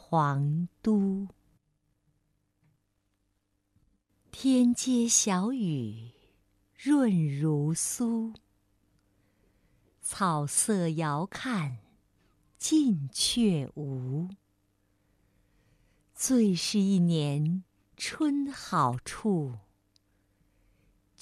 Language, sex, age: Chinese, female, 50-69